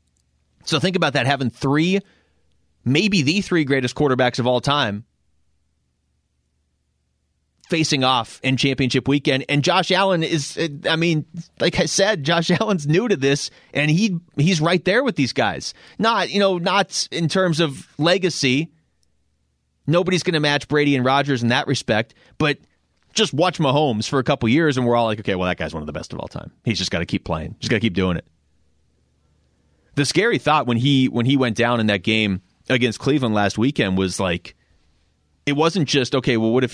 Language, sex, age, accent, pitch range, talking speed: English, male, 30-49, American, 95-145 Hz, 195 wpm